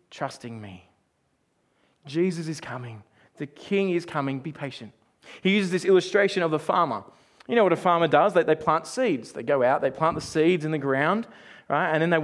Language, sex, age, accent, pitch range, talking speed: English, male, 20-39, Australian, 165-205 Hz, 205 wpm